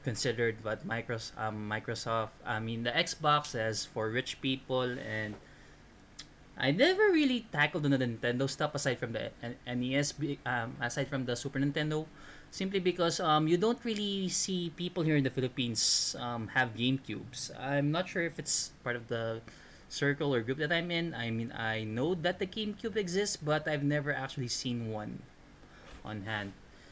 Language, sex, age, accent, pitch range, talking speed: Filipino, male, 20-39, native, 115-150 Hz, 175 wpm